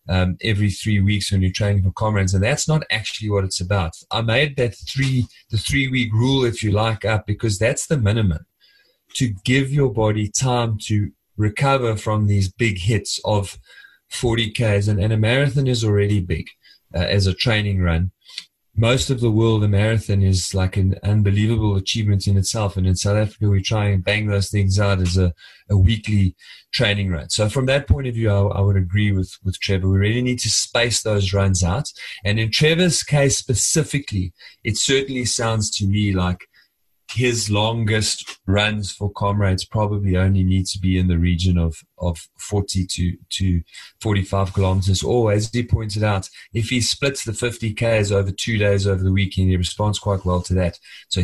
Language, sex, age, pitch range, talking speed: English, male, 30-49, 95-110 Hz, 185 wpm